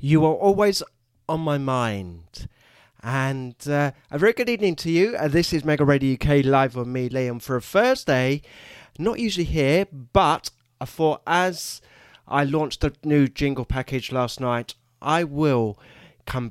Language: English